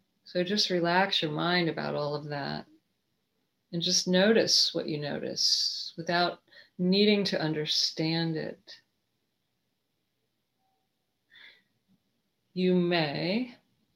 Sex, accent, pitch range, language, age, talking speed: female, American, 165-195 Hz, English, 40-59, 95 wpm